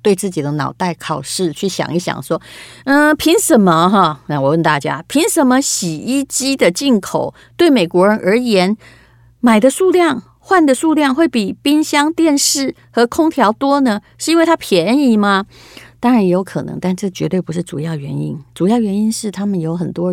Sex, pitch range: female, 160-230 Hz